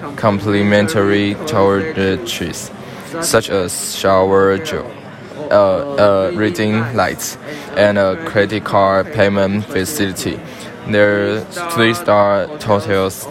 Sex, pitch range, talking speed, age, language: male, 95-105 Hz, 90 wpm, 10-29, English